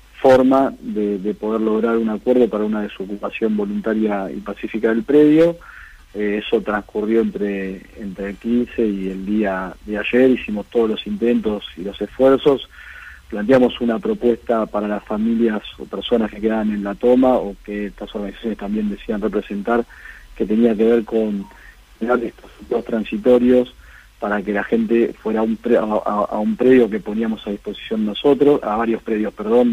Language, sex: Spanish, male